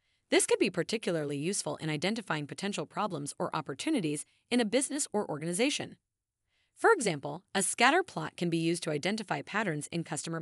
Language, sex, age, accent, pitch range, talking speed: English, female, 30-49, American, 160-240 Hz, 165 wpm